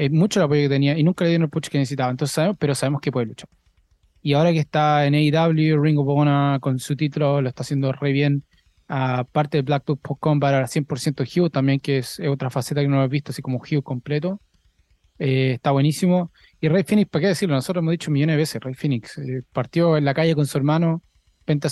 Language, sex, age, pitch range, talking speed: English, male, 20-39, 135-155 Hz, 230 wpm